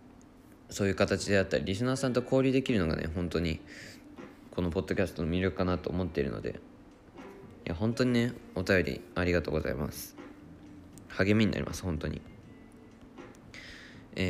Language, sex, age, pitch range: Japanese, male, 20-39, 85-110 Hz